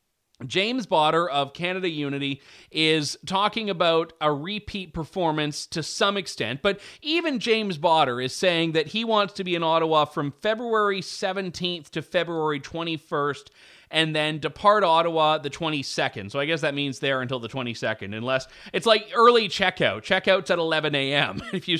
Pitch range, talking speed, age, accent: 140-190 Hz, 160 wpm, 30-49, American